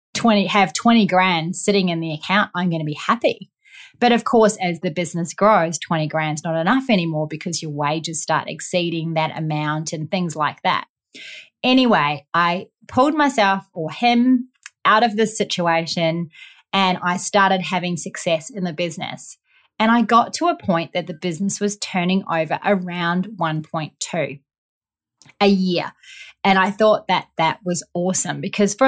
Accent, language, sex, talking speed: Australian, English, female, 160 wpm